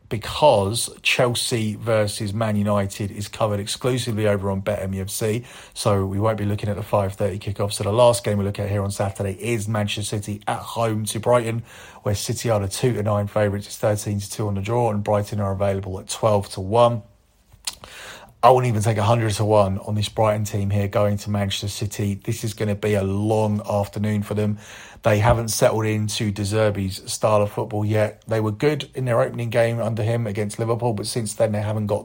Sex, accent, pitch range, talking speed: male, British, 105-115 Hz, 215 wpm